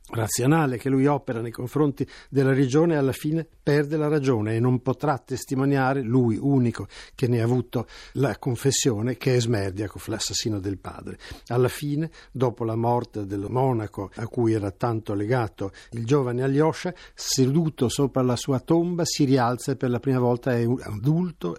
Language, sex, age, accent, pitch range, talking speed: Italian, male, 50-69, native, 115-145 Hz, 165 wpm